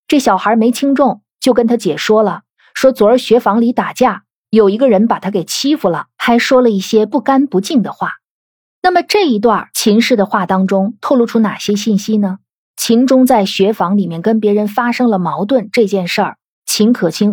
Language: Chinese